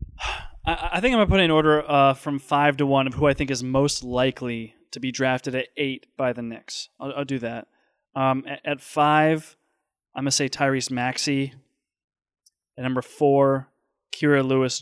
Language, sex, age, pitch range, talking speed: English, male, 20-39, 130-150 Hz, 190 wpm